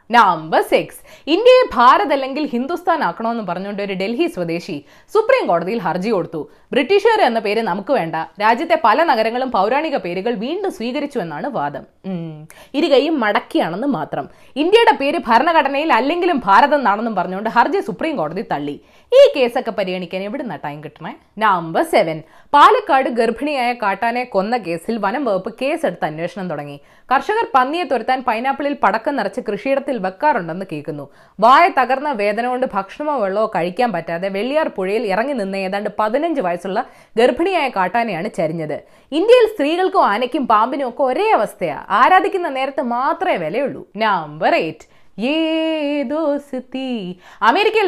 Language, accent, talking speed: Malayalam, native, 115 wpm